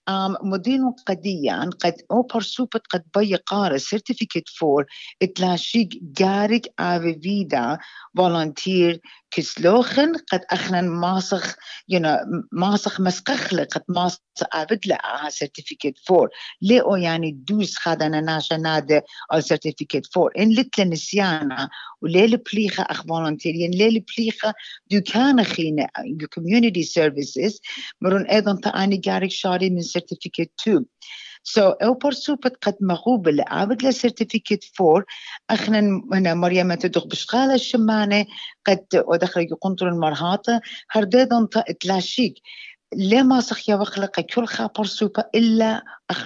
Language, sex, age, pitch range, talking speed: English, female, 50-69, 175-220 Hz, 110 wpm